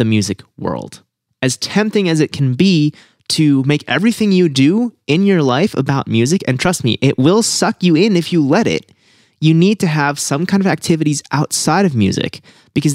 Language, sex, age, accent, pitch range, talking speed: English, male, 30-49, American, 120-165 Hz, 200 wpm